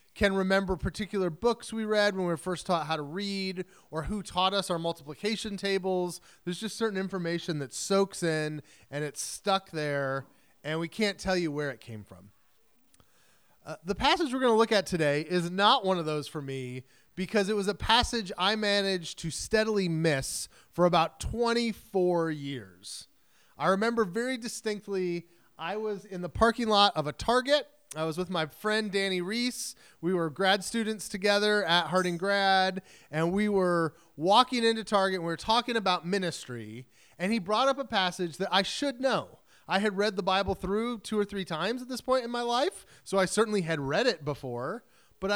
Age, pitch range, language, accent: 30-49, 165-215 Hz, English, American